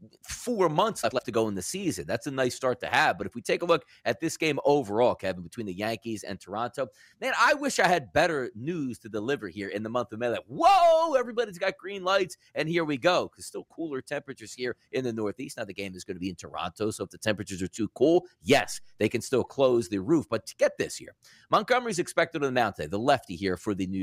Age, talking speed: 30-49, 260 wpm